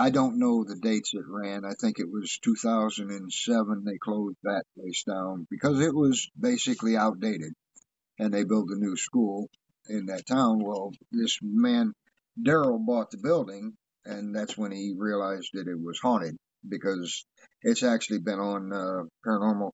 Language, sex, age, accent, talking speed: English, male, 50-69, American, 165 wpm